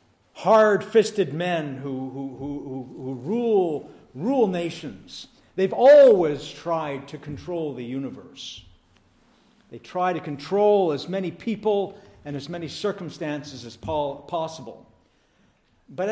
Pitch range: 135-210 Hz